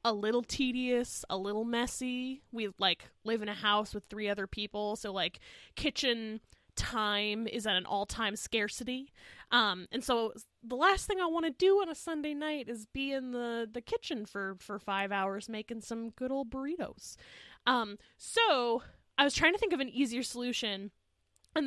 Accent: American